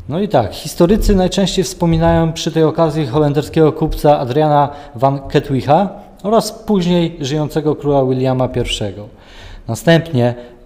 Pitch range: 125-170 Hz